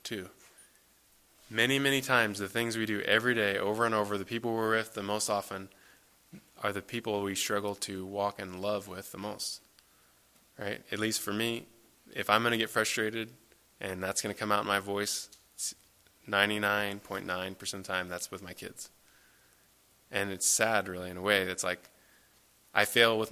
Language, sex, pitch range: English, male, 95-110 Hz